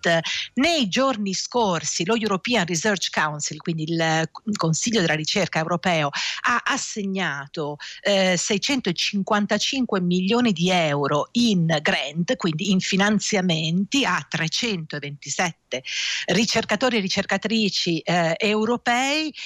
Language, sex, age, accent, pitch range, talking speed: Italian, female, 50-69, native, 165-215 Hz, 100 wpm